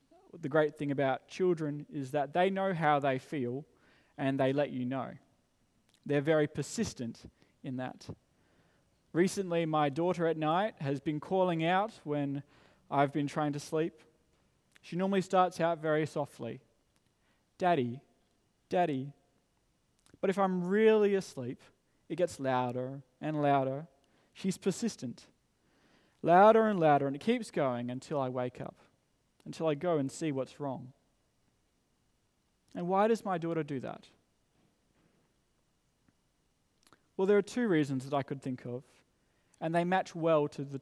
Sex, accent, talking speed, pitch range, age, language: male, Australian, 145 wpm, 130-175 Hz, 20-39, English